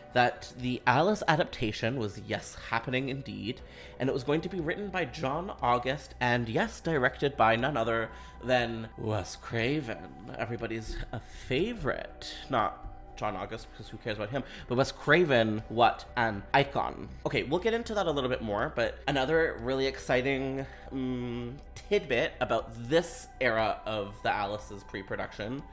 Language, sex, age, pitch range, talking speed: English, male, 30-49, 110-145 Hz, 150 wpm